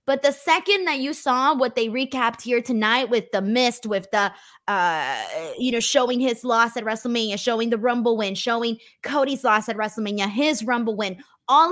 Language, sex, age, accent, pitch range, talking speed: English, female, 20-39, American, 220-295 Hz, 190 wpm